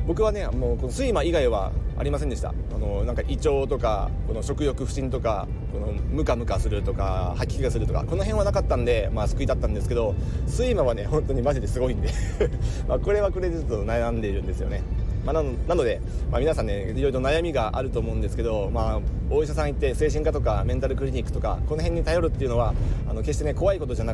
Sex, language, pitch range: male, Japanese, 95-130 Hz